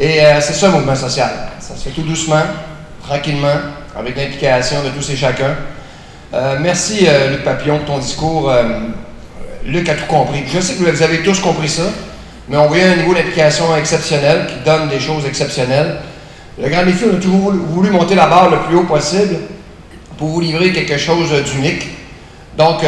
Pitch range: 145-170 Hz